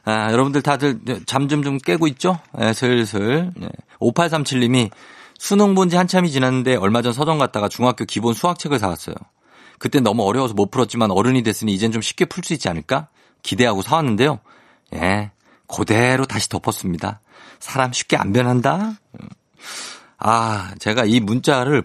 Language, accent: Korean, native